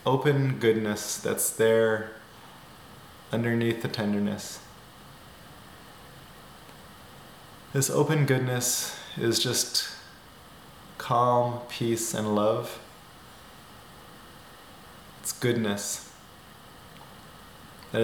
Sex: male